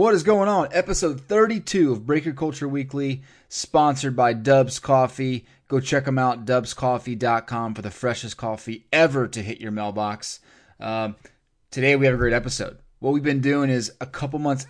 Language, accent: English, American